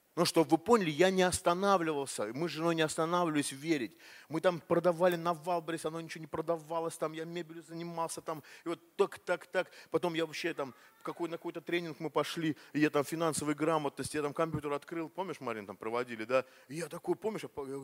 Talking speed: 195 wpm